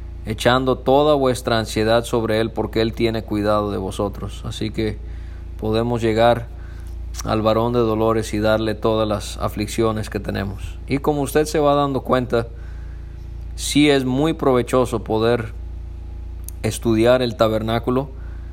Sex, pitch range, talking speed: male, 95-120 Hz, 140 wpm